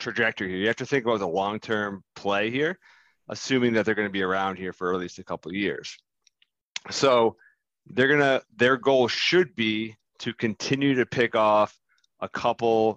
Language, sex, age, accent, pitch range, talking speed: English, male, 30-49, American, 95-120 Hz, 180 wpm